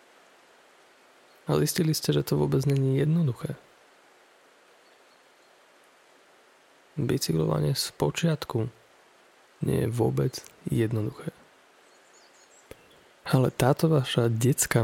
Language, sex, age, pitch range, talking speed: Slovak, male, 20-39, 110-140 Hz, 75 wpm